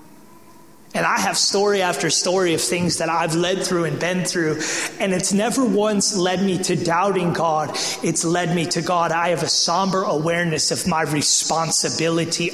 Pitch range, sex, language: 170-195 Hz, male, English